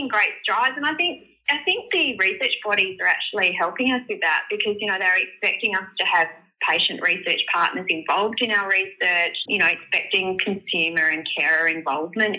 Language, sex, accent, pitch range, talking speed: English, female, Australian, 165-220 Hz, 185 wpm